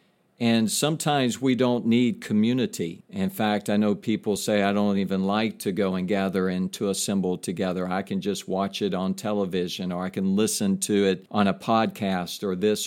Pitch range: 100-115 Hz